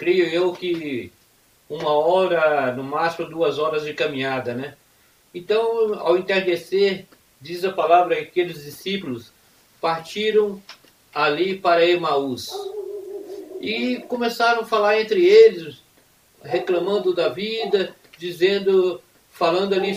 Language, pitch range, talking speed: Portuguese, 185-255 Hz, 110 wpm